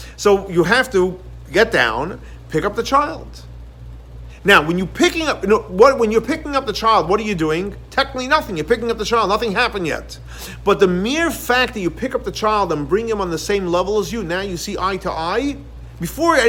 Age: 50-69